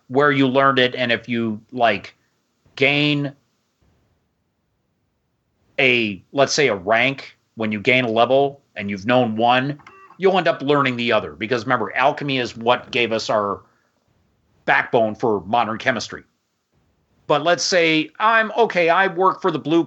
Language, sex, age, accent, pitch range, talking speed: English, male, 40-59, American, 115-150 Hz, 155 wpm